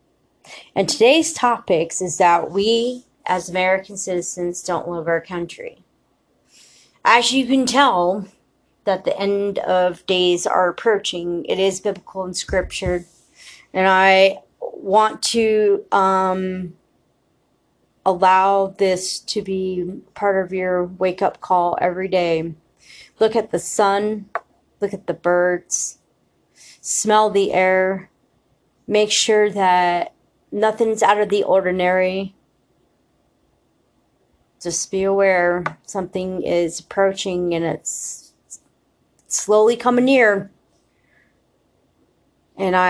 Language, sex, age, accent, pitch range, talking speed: English, female, 30-49, American, 180-210 Hz, 105 wpm